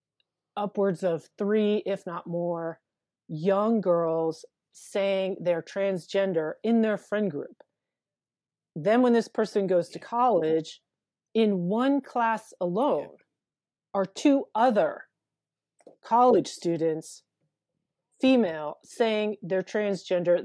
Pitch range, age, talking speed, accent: 170-215 Hz, 30-49, 105 wpm, American